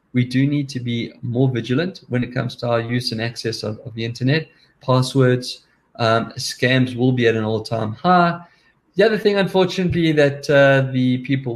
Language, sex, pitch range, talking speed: English, male, 115-135 Hz, 185 wpm